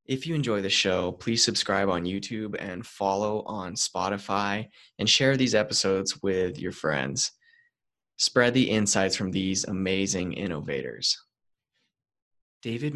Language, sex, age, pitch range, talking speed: English, male, 20-39, 95-115 Hz, 130 wpm